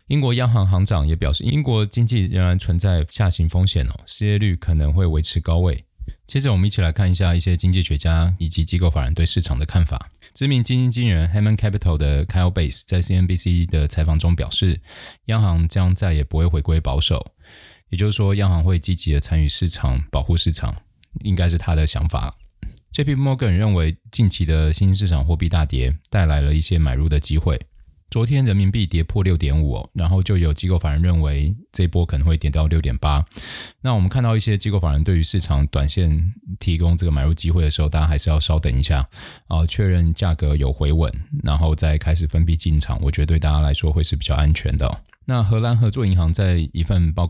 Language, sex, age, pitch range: Chinese, male, 20-39, 80-95 Hz